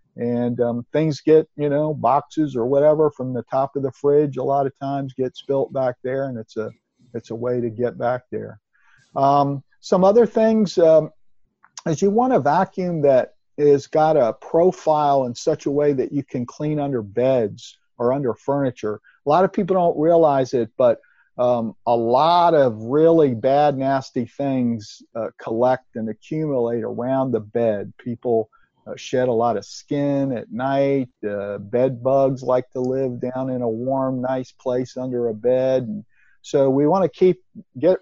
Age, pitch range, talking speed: 50-69, 125-150 Hz, 180 wpm